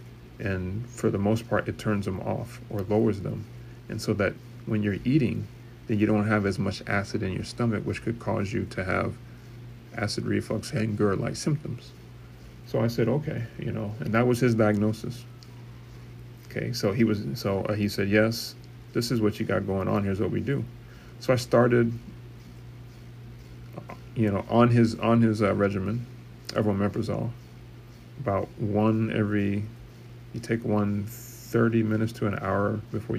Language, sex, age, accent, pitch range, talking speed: English, male, 30-49, American, 105-120 Hz, 170 wpm